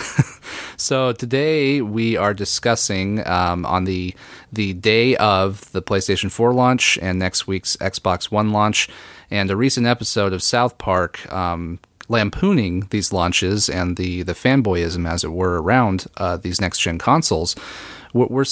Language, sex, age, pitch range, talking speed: English, male, 30-49, 90-110 Hz, 150 wpm